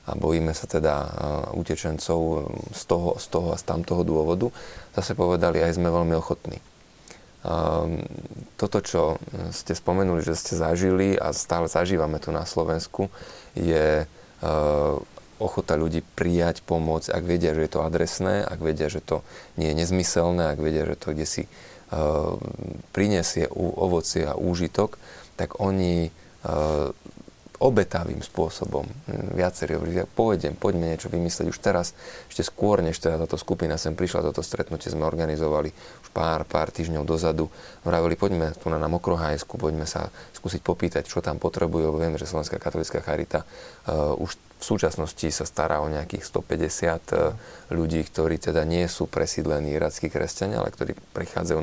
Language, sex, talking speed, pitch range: Slovak, male, 155 wpm, 80-85 Hz